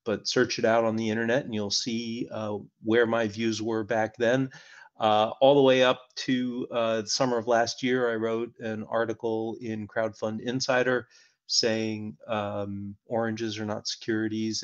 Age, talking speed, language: 40-59, 170 wpm, English